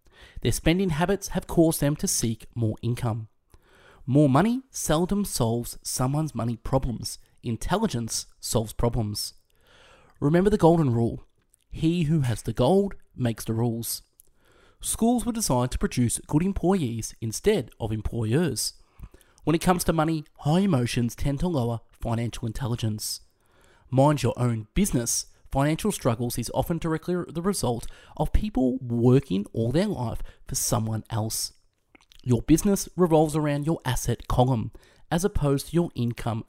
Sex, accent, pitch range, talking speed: male, Australian, 115-170 Hz, 140 wpm